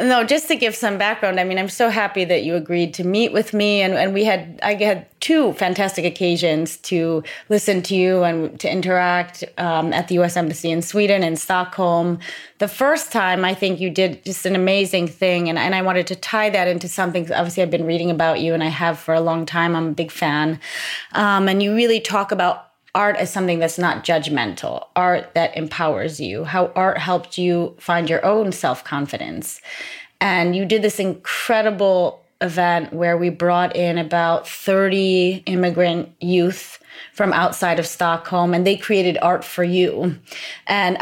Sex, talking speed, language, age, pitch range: female, 190 wpm, English, 30-49, 170-200 Hz